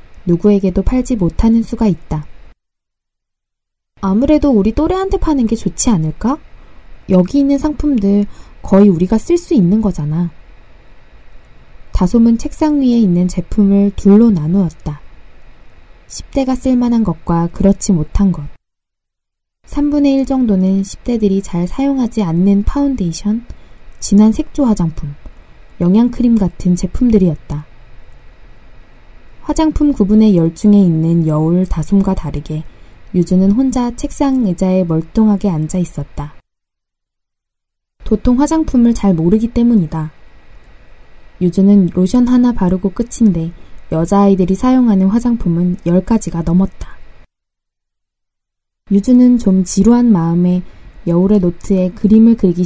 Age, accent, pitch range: 20-39, native, 170-235 Hz